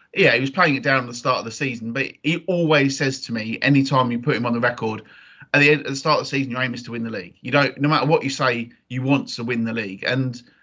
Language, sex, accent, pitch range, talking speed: English, male, British, 125-155 Hz, 310 wpm